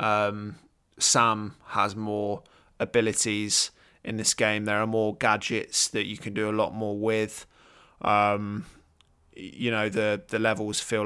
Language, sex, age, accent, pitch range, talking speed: English, male, 20-39, British, 105-115 Hz, 145 wpm